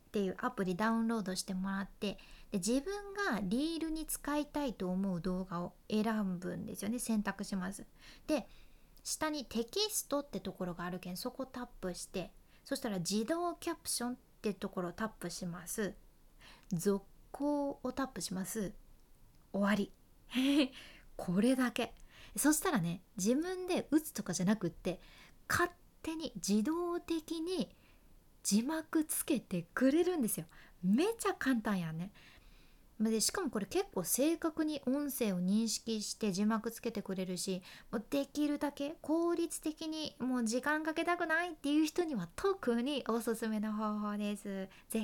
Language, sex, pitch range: Japanese, female, 195-285 Hz